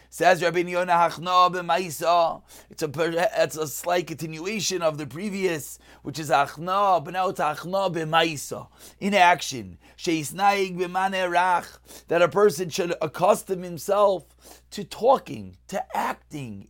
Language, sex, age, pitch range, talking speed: English, male, 30-49, 140-180 Hz, 125 wpm